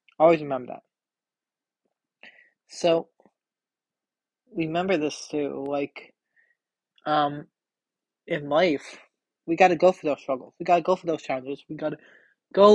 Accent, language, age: American, English, 30-49